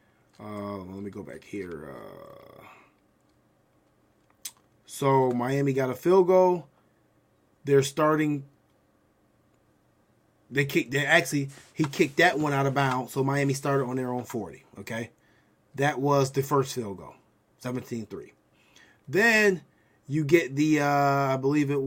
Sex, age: male, 20-39